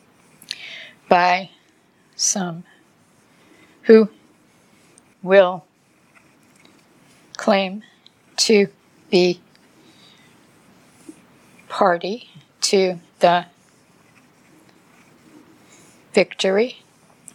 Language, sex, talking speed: English, female, 40 wpm